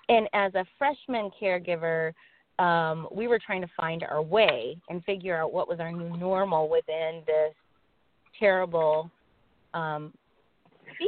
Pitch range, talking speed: 165-215 Hz, 140 wpm